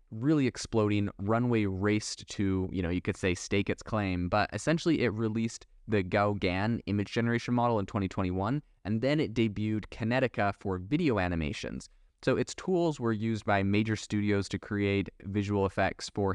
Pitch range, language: 95-110 Hz, English